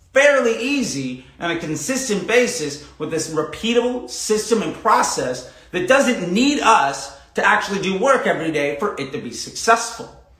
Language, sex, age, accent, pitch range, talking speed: English, male, 30-49, American, 150-225 Hz, 155 wpm